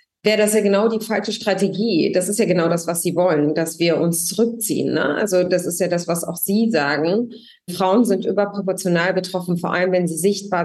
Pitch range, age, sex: 180-215 Hz, 20-39, female